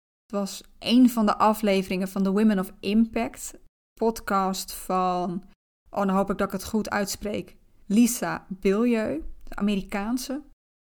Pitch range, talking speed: 195-230 Hz, 135 wpm